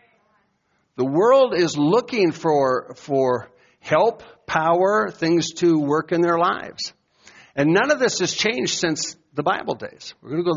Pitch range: 140-195 Hz